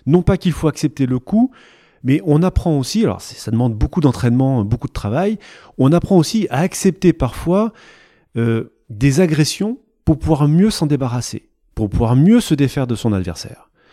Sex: male